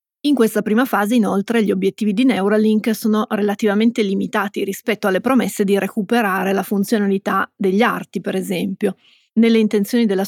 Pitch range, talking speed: 190-220 Hz, 150 wpm